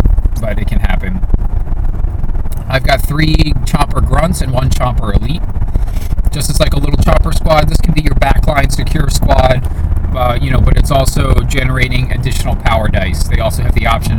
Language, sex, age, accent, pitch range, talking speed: English, male, 30-49, American, 90-120 Hz, 180 wpm